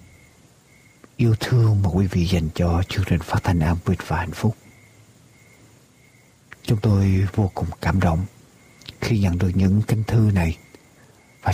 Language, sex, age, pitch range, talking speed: Vietnamese, male, 60-79, 90-120 Hz, 155 wpm